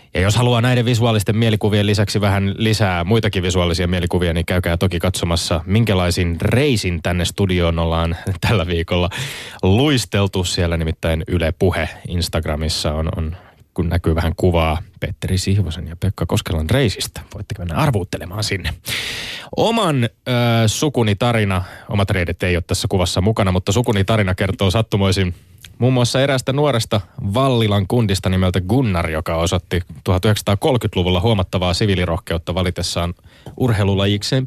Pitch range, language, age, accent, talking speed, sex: 85-110 Hz, Finnish, 20-39, native, 130 wpm, male